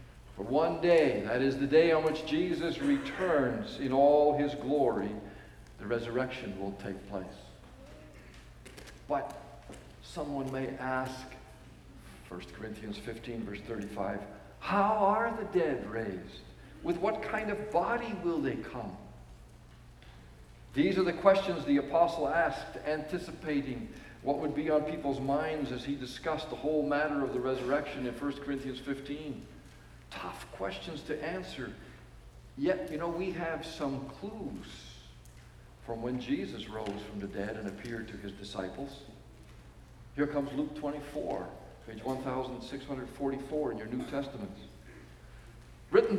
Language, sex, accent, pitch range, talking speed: English, male, American, 110-160 Hz, 135 wpm